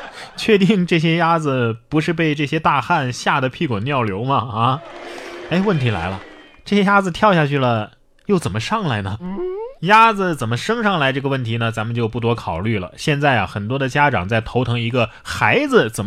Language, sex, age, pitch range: Chinese, male, 20-39, 125-200 Hz